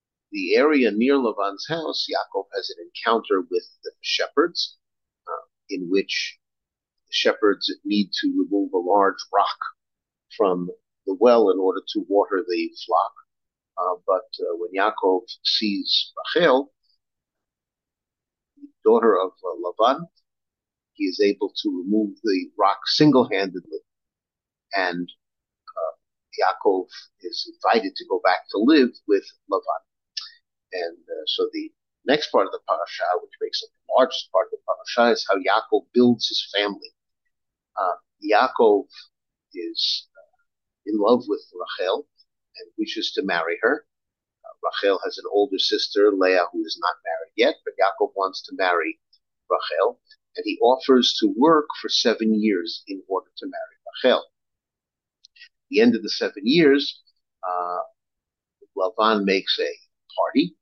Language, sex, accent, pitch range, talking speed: English, male, American, 310-440 Hz, 145 wpm